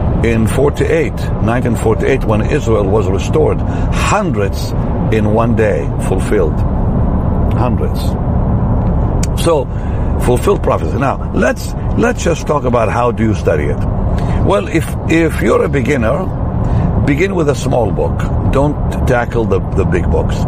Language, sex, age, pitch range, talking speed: English, male, 60-79, 100-135 Hz, 130 wpm